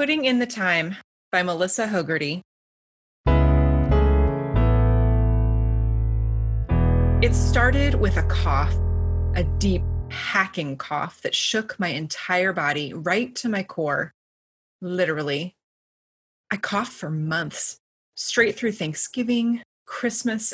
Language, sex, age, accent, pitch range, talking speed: English, female, 30-49, American, 150-220 Hz, 100 wpm